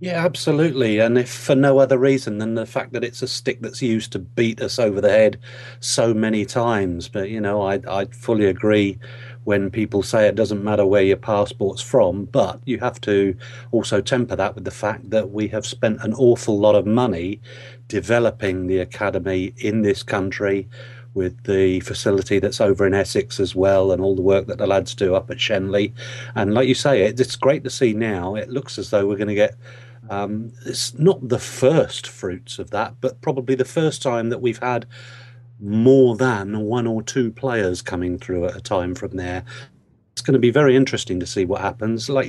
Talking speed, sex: 205 wpm, male